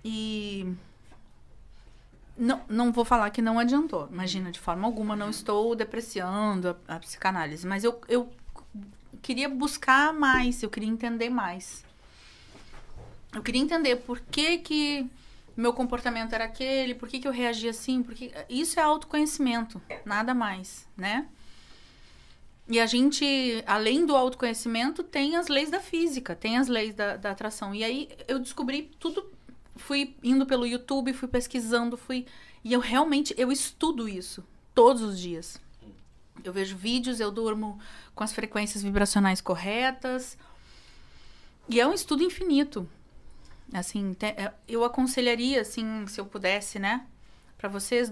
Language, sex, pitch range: Portuguese, female, 205-260 Hz